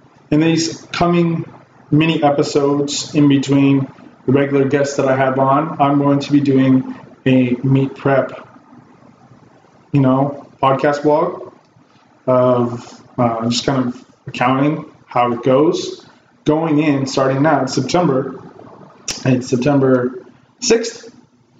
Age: 20-39